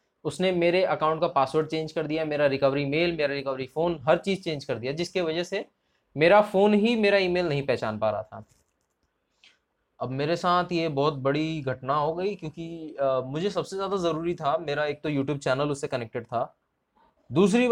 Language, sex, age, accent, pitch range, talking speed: Hindi, male, 20-39, native, 130-170 Hz, 195 wpm